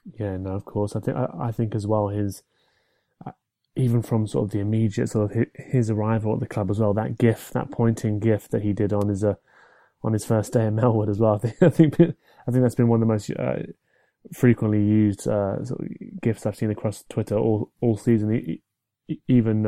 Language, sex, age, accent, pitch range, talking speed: English, male, 20-39, British, 105-120 Hz, 230 wpm